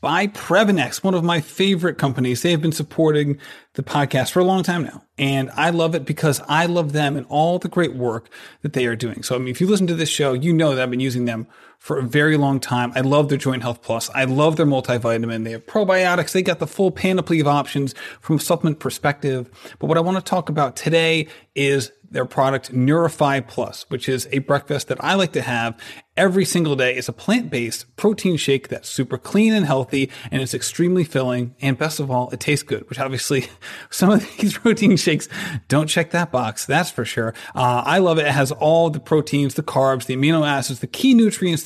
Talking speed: 225 wpm